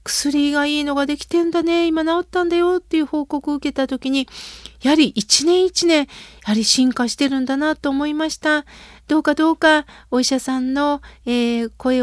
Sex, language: female, Japanese